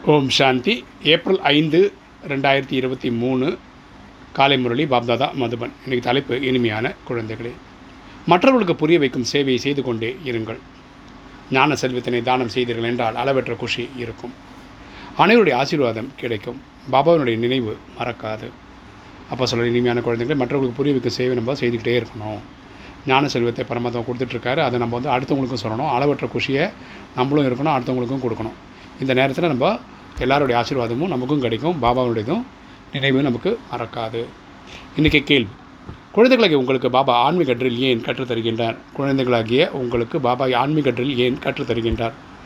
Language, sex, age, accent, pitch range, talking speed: Tamil, male, 30-49, native, 120-140 Hz, 120 wpm